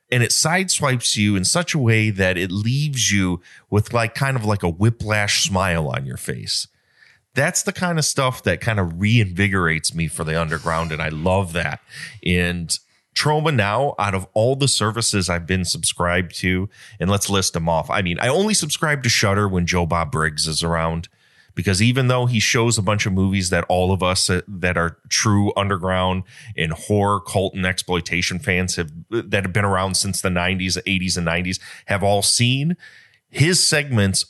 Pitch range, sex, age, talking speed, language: 90-125 Hz, male, 30-49, 190 wpm, English